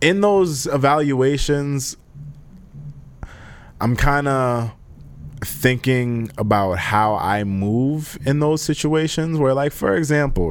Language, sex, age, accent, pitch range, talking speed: English, male, 20-39, American, 95-135 Hz, 105 wpm